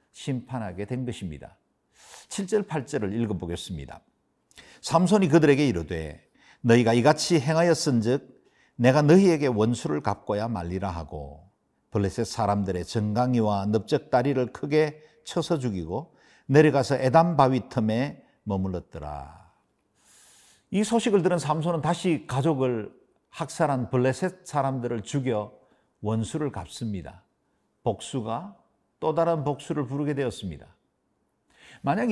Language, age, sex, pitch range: Korean, 50-69, male, 110-155 Hz